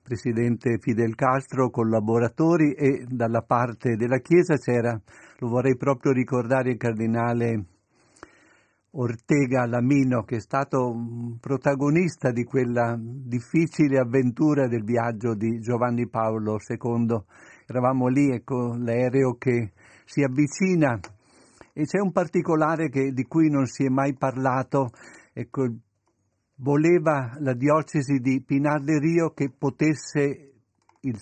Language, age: Italian, 50-69